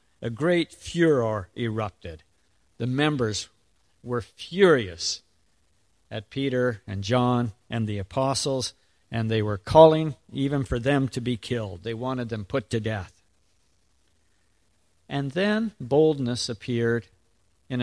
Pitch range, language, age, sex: 95-145 Hz, English, 50-69, male